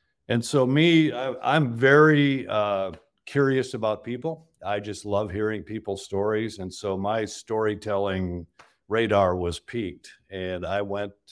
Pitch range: 100-125 Hz